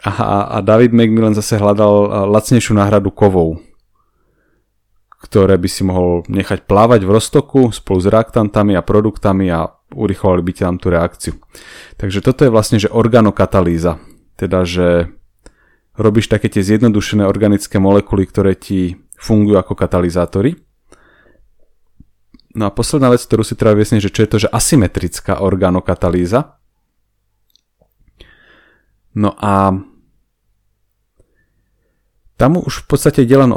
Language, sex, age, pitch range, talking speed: English, male, 30-49, 95-115 Hz, 120 wpm